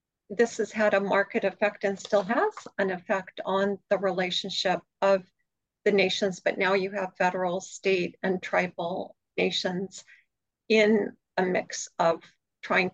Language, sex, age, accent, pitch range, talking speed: English, female, 50-69, American, 190-230 Hz, 145 wpm